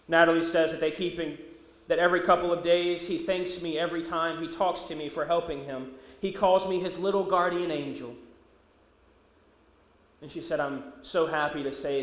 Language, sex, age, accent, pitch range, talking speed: English, male, 30-49, American, 165-215 Hz, 190 wpm